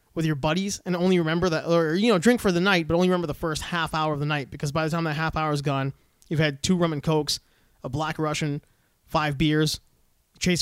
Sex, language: male, English